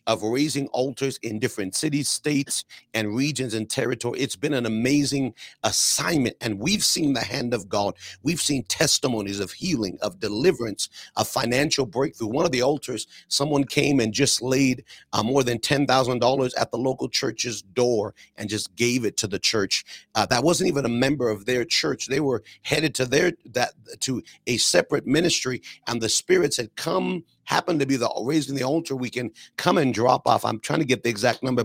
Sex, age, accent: male, 40-59, American